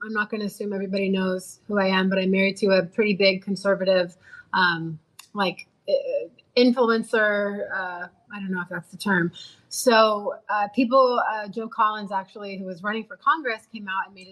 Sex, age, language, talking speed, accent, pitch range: female, 30-49, English, 195 wpm, American, 190-225 Hz